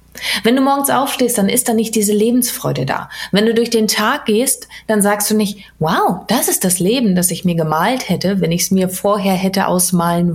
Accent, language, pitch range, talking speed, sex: German, German, 165-225 Hz, 220 wpm, female